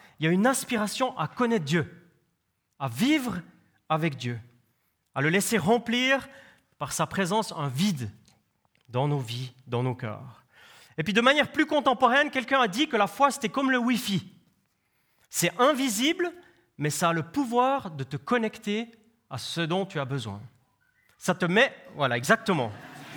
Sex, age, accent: male, 30-49, French